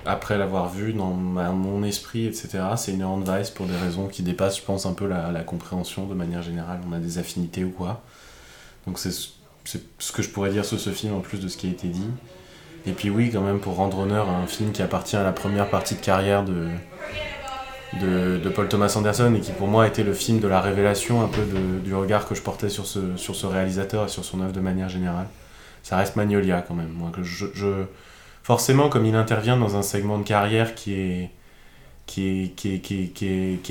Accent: French